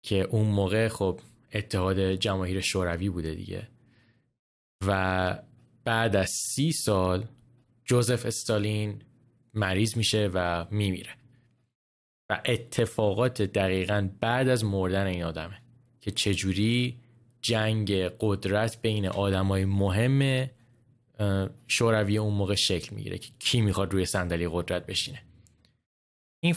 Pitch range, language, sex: 95-120 Hz, Persian, male